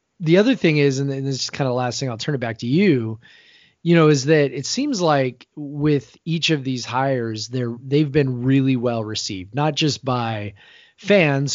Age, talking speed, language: 20-39, 210 wpm, English